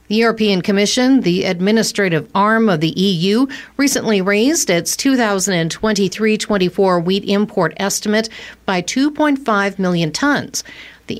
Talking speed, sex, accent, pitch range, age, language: 115 wpm, female, American, 175-220 Hz, 50-69, English